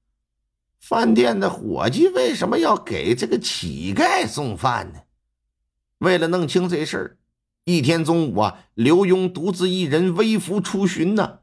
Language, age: Chinese, 50-69